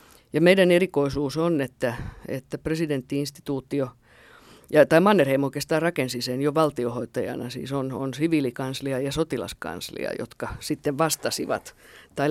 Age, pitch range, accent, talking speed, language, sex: 50-69, 125-155 Hz, native, 120 wpm, Finnish, female